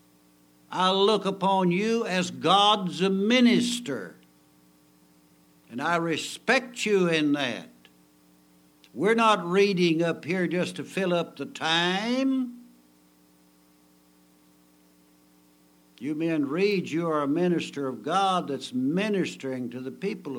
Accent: American